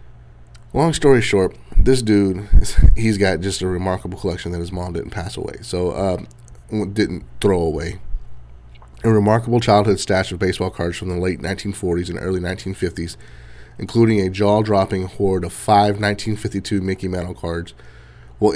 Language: English